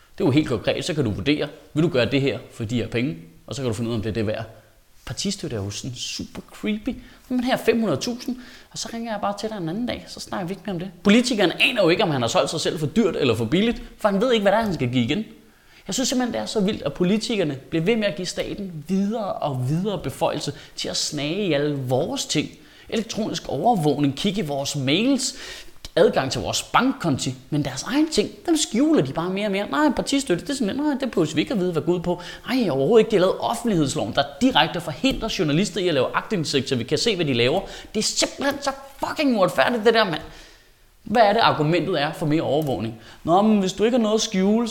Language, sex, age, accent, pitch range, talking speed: Danish, male, 30-49, native, 135-225 Hz, 260 wpm